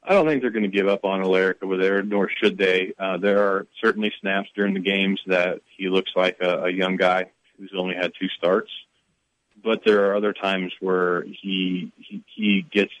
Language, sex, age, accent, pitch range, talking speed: English, male, 40-59, American, 90-110 Hz, 210 wpm